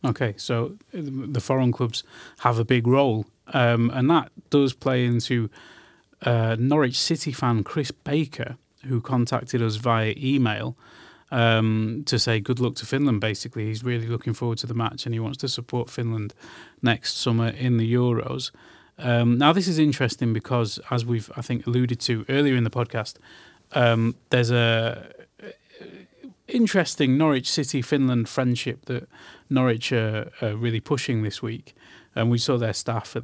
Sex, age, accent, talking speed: male, 30-49, British, 160 wpm